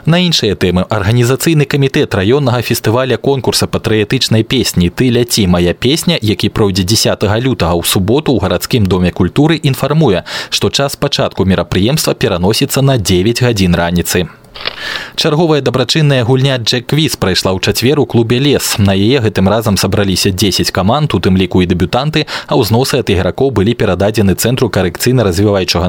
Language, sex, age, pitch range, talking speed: Russian, male, 20-39, 95-130 Hz, 145 wpm